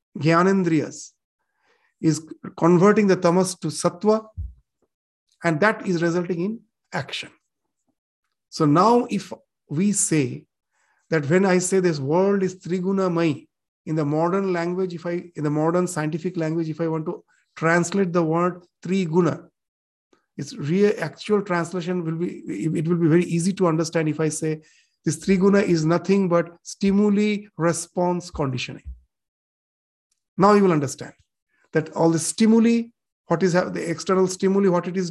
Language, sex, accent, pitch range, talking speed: English, male, Indian, 165-195 Hz, 145 wpm